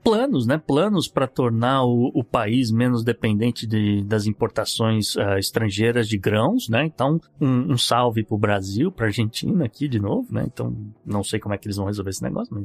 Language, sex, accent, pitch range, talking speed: Portuguese, male, Brazilian, 115-155 Hz, 210 wpm